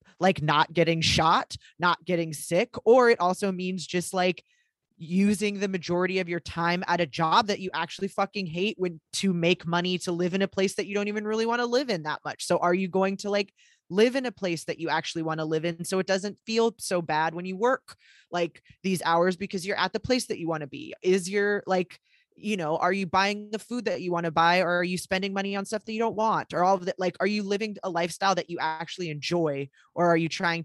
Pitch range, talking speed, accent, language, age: 165-195 Hz, 255 wpm, American, English, 20-39